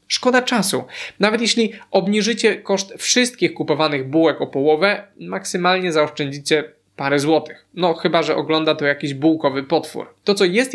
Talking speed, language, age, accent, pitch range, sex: 145 wpm, Polish, 20-39, native, 150-195 Hz, male